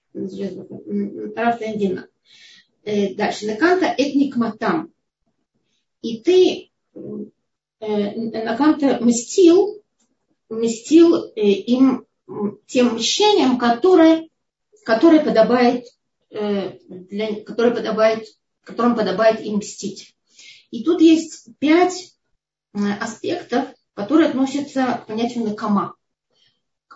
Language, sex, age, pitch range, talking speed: Russian, female, 30-49, 215-270 Hz, 70 wpm